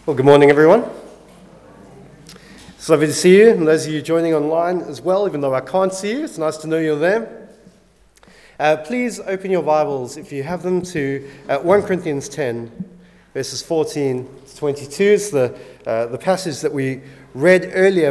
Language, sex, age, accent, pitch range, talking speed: English, male, 30-49, Australian, 150-185 Hz, 180 wpm